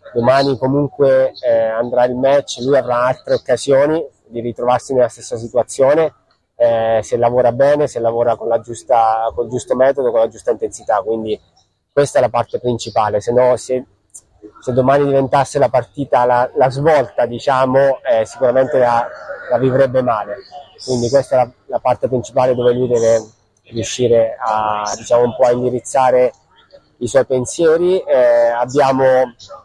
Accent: native